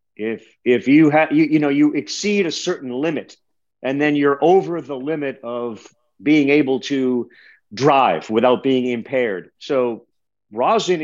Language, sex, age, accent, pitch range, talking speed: English, male, 50-69, American, 120-155 Hz, 150 wpm